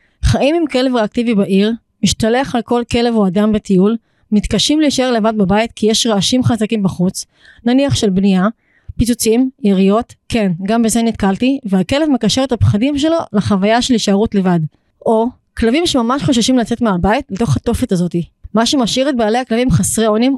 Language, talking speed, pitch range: Hebrew, 160 wpm, 200-240 Hz